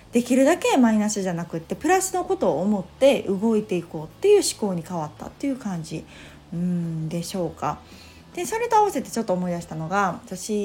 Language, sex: Japanese, female